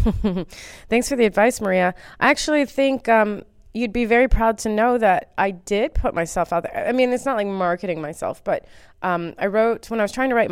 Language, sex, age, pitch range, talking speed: English, female, 20-39, 165-215 Hz, 220 wpm